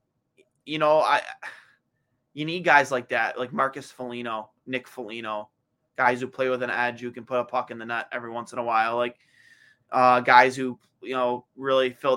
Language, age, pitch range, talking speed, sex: English, 20-39, 115-130 Hz, 195 wpm, male